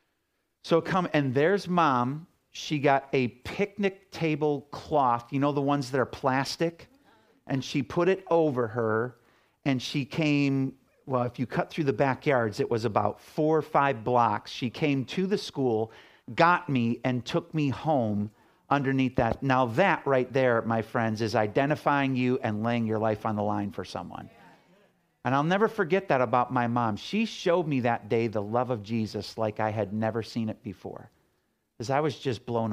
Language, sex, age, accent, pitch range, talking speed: English, male, 50-69, American, 110-145 Hz, 185 wpm